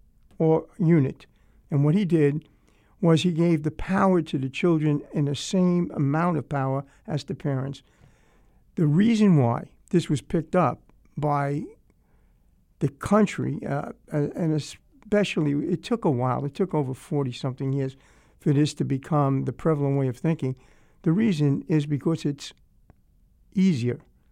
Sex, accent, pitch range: male, American, 135-165 Hz